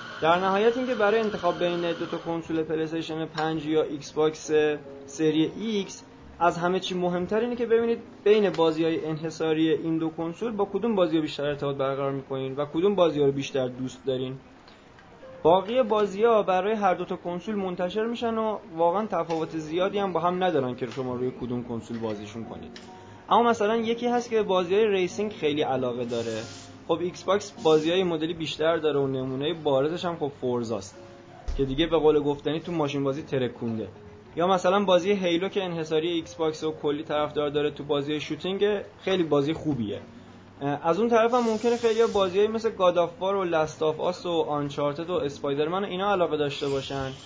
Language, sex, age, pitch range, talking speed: Persian, male, 20-39, 140-190 Hz, 180 wpm